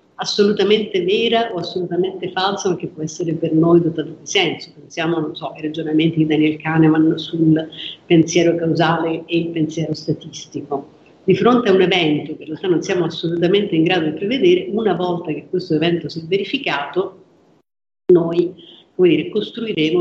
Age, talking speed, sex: 50-69, 160 wpm, female